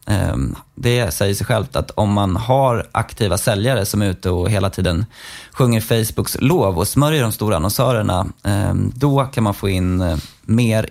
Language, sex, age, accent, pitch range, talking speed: Swedish, male, 20-39, native, 100-130 Hz, 165 wpm